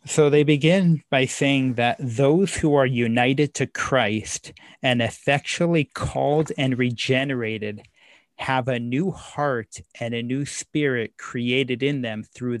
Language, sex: English, male